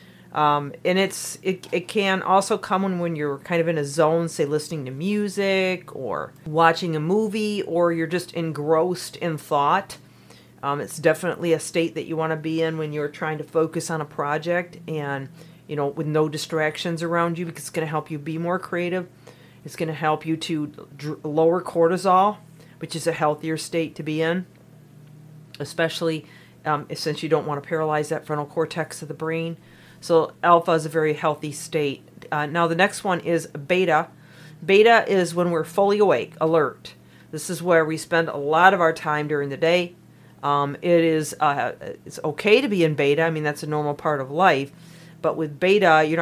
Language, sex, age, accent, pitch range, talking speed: English, female, 40-59, American, 150-170 Hz, 195 wpm